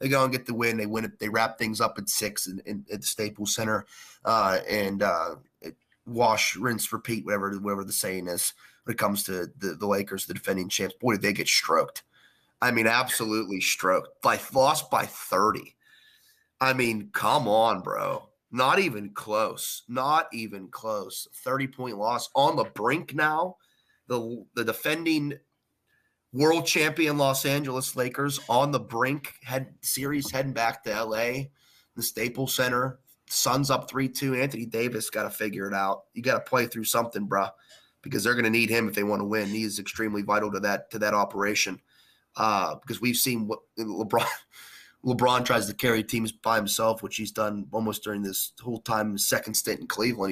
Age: 30-49